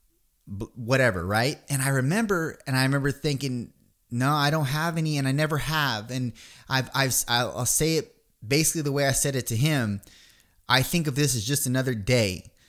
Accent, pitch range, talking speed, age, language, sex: American, 115-150 Hz, 195 wpm, 30-49, English, male